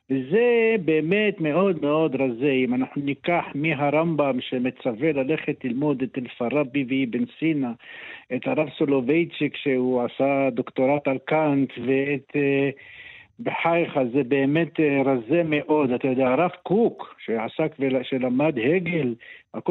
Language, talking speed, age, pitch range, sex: Hebrew, 120 wpm, 60-79, 135-175 Hz, male